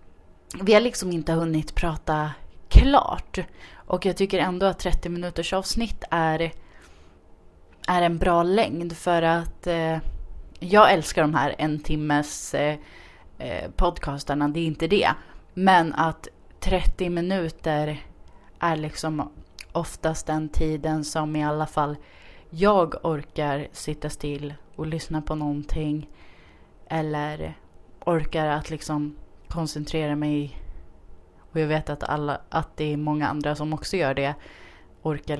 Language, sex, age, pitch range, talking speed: Swedish, female, 30-49, 145-165 Hz, 130 wpm